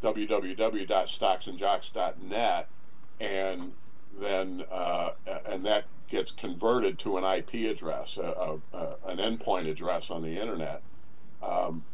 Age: 50-69